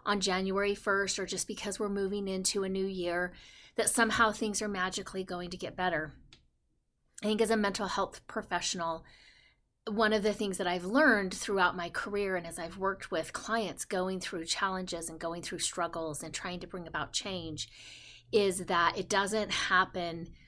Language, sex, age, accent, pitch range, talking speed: English, female, 30-49, American, 175-205 Hz, 180 wpm